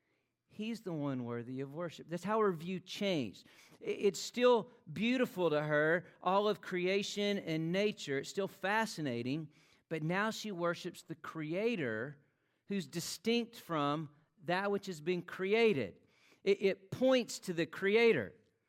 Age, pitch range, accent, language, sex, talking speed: 50-69, 145-200 Hz, American, English, male, 140 wpm